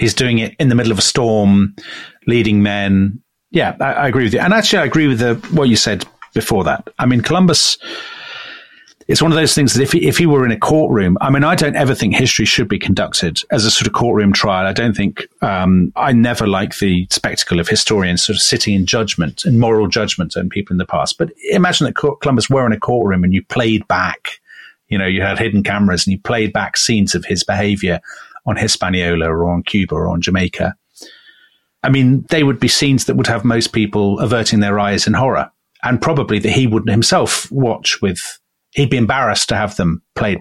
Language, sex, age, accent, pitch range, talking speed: English, male, 40-59, British, 100-130 Hz, 220 wpm